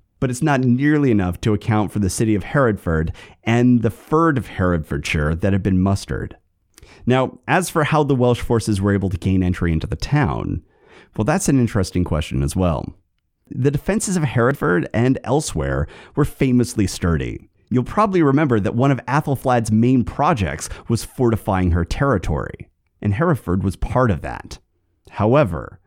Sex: male